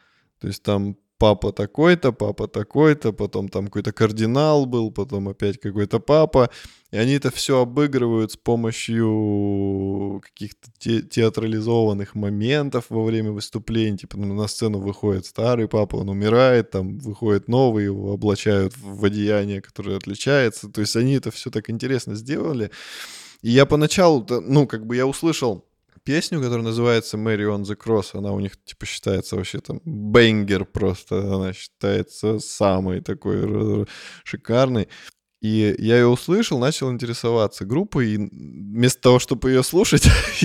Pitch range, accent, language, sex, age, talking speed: 100-130 Hz, native, Russian, male, 20-39, 140 wpm